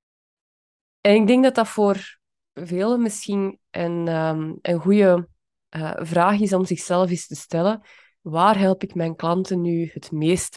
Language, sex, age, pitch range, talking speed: Dutch, female, 20-39, 160-190 Hz, 160 wpm